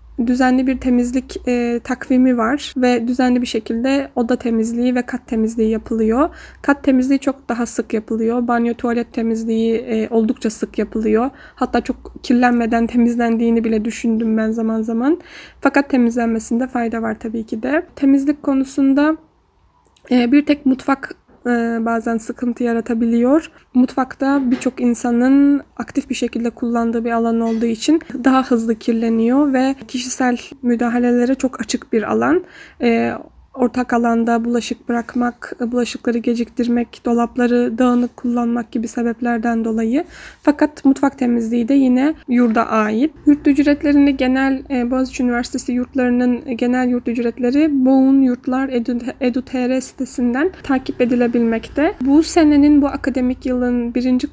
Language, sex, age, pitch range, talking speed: Turkish, female, 20-39, 235-275 Hz, 125 wpm